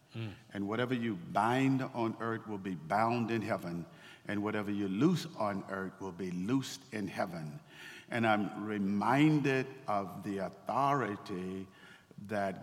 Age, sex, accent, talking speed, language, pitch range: 50-69, male, American, 140 wpm, English, 100-130 Hz